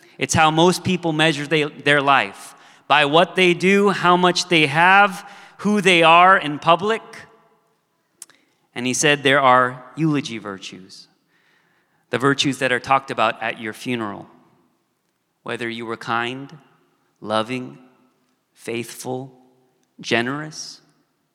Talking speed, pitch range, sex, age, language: 120 wpm, 130-185 Hz, male, 30-49, English